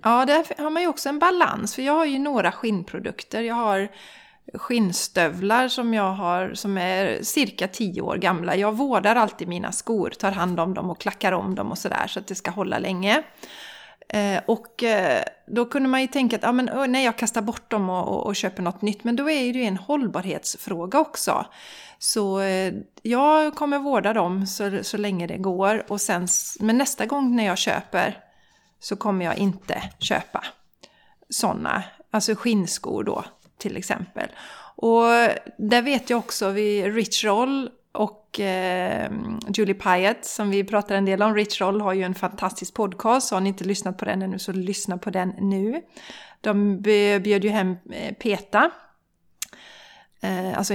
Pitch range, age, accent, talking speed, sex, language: 195-235 Hz, 30-49, native, 175 wpm, female, Swedish